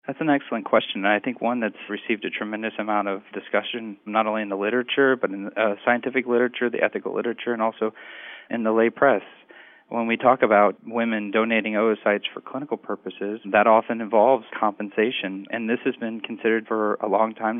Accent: American